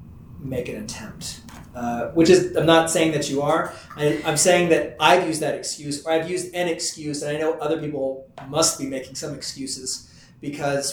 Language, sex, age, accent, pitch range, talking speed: English, male, 30-49, American, 145-175 Hz, 200 wpm